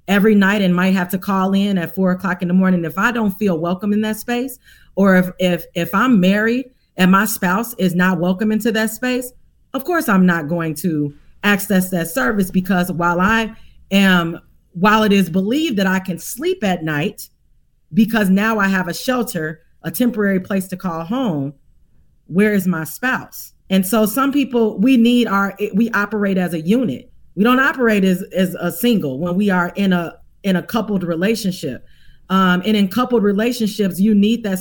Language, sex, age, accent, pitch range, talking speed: English, female, 40-59, American, 175-220 Hz, 195 wpm